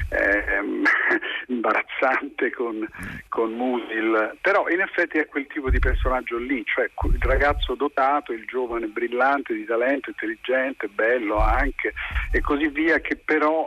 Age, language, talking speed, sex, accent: 50-69, Italian, 135 wpm, male, native